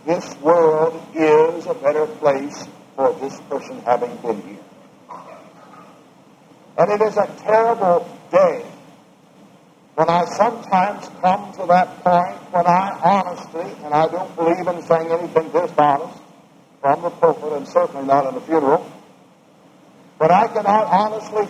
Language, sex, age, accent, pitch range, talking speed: English, male, 60-79, American, 170-230 Hz, 135 wpm